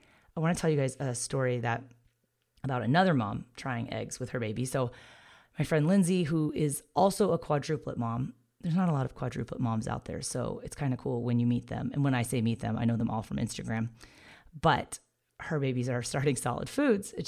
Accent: American